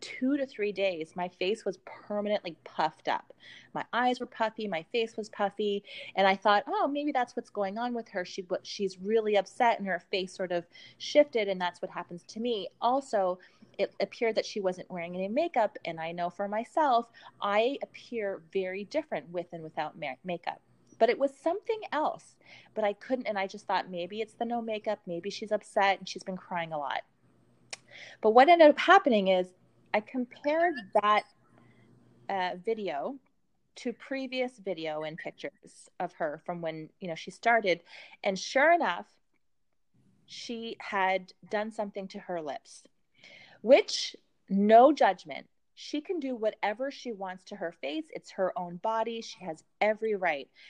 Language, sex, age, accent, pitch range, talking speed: English, female, 30-49, American, 185-250 Hz, 175 wpm